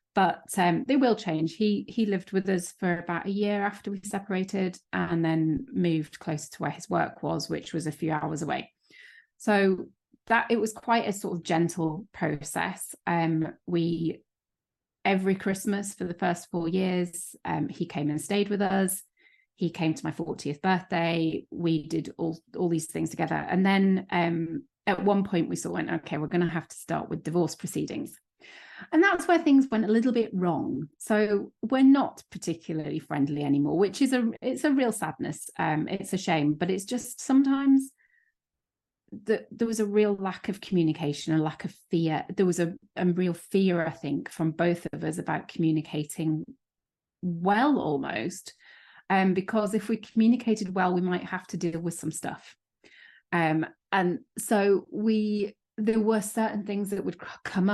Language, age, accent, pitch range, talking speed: English, 30-49, British, 165-215 Hz, 180 wpm